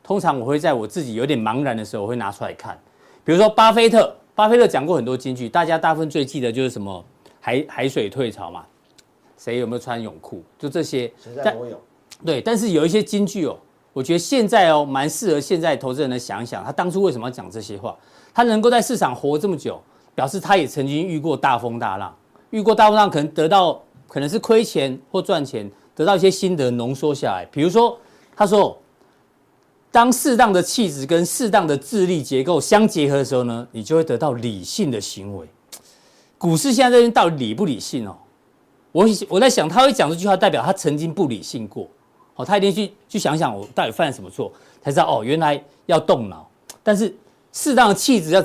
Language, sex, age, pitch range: Chinese, male, 40-59, 130-210 Hz